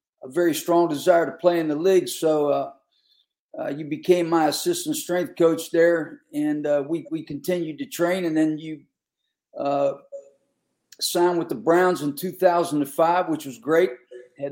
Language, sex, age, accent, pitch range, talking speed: English, male, 50-69, American, 155-180 Hz, 165 wpm